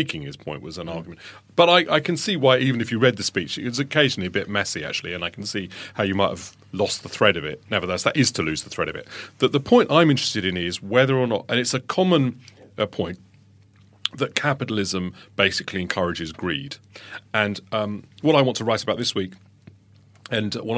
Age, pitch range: 40-59, 95-125 Hz